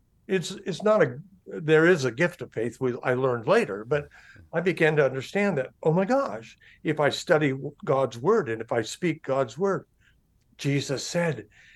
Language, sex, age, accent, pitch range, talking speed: English, male, 60-79, American, 140-190 Hz, 185 wpm